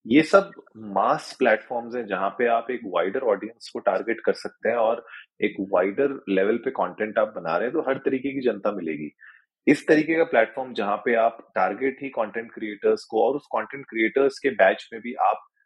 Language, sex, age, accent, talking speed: Hindi, male, 30-49, native, 205 wpm